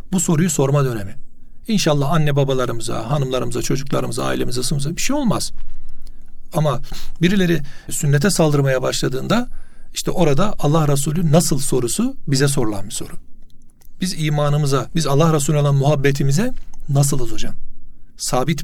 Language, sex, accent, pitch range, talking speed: Turkish, male, native, 135-170 Hz, 125 wpm